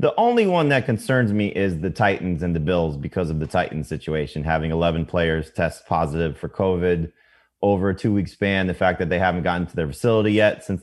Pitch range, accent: 85-100 Hz, American